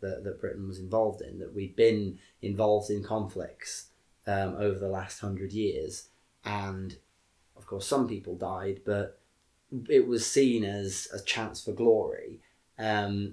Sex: male